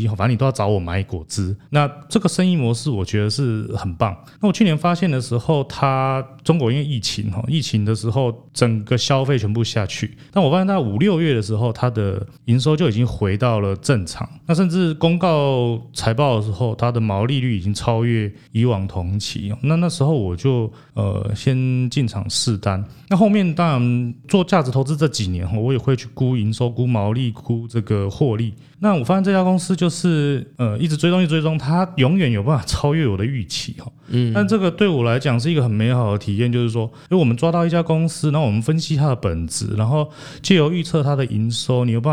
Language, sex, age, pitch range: Chinese, male, 30-49, 110-150 Hz